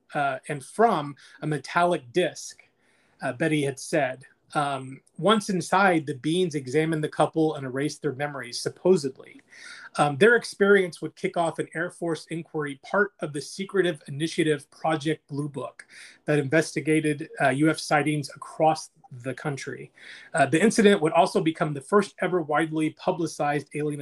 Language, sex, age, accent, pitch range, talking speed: English, male, 30-49, American, 150-185 Hz, 150 wpm